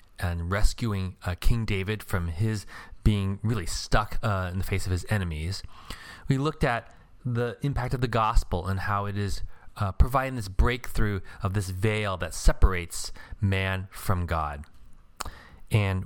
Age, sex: 30-49, male